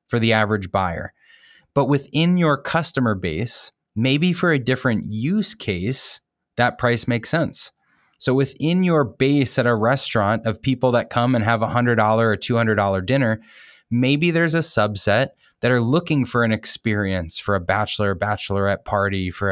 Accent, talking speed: American, 170 wpm